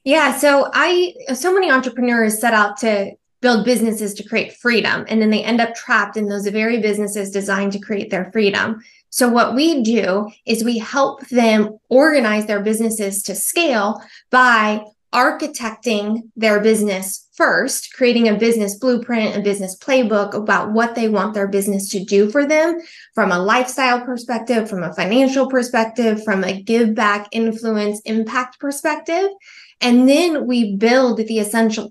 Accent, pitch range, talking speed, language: American, 210-250 Hz, 160 wpm, English